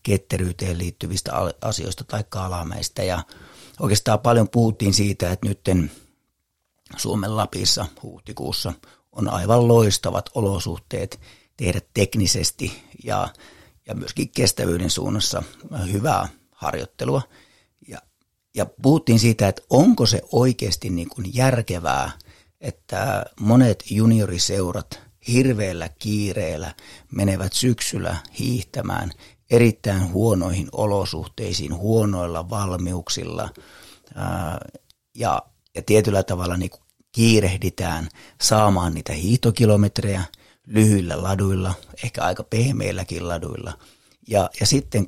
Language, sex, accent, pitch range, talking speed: Finnish, male, native, 90-115 Hz, 90 wpm